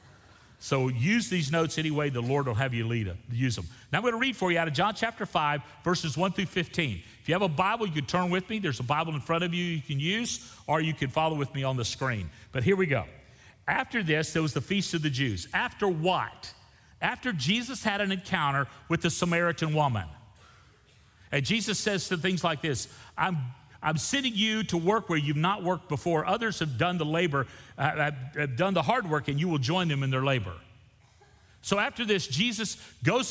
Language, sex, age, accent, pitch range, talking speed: English, male, 40-59, American, 135-185 Hz, 225 wpm